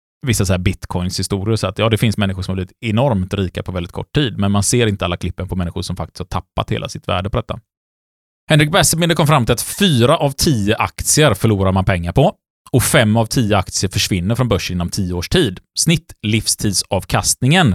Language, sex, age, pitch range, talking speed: Swedish, male, 30-49, 95-125 Hz, 215 wpm